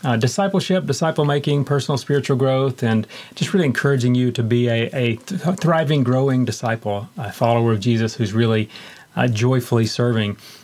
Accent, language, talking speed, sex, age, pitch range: American, English, 150 wpm, male, 40-59, 115-140 Hz